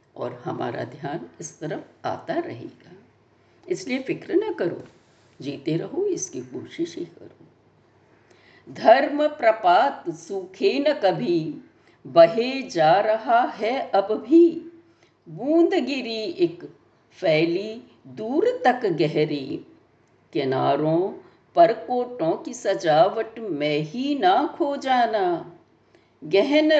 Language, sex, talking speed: Hindi, female, 105 wpm